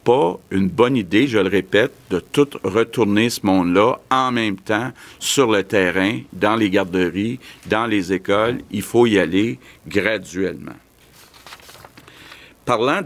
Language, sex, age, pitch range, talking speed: French, male, 60-79, 90-110 Hz, 140 wpm